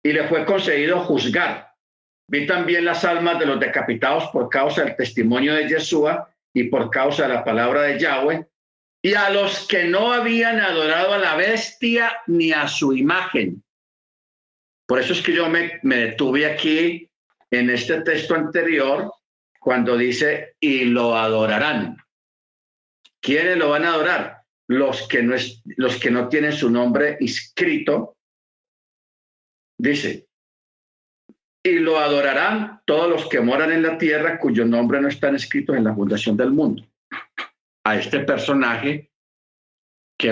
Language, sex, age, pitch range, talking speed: Spanish, male, 50-69, 120-170 Hz, 145 wpm